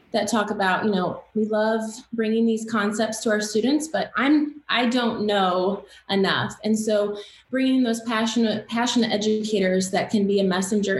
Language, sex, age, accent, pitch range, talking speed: English, female, 20-39, American, 205-235 Hz, 175 wpm